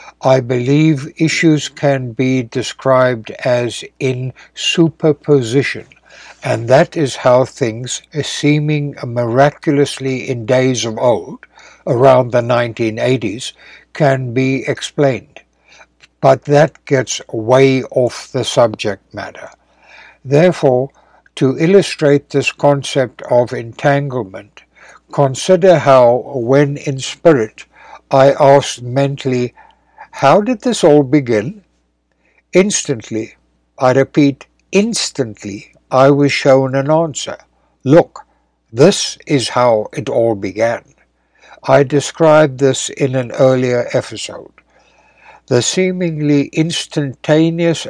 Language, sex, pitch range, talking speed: English, male, 125-150 Hz, 100 wpm